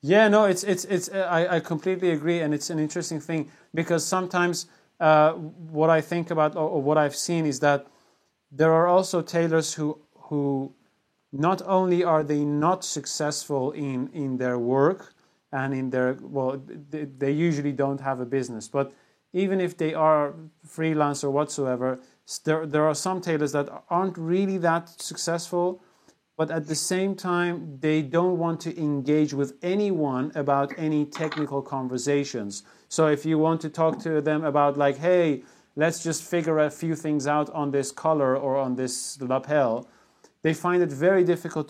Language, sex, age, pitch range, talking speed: English, male, 30-49, 140-170 Hz, 170 wpm